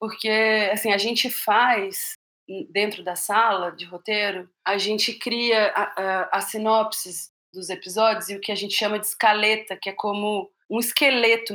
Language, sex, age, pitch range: English, female, 30-49, 200-250 Hz